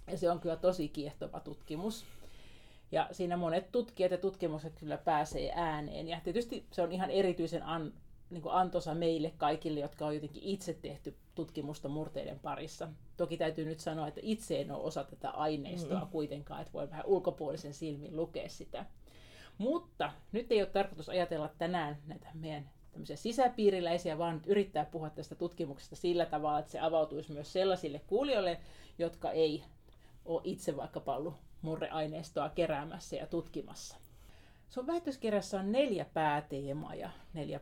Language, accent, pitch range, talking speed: Finnish, native, 155-195 Hz, 145 wpm